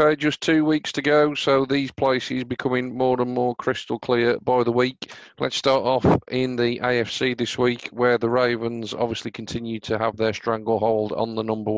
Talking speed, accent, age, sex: 190 wpm, British, 40-59, male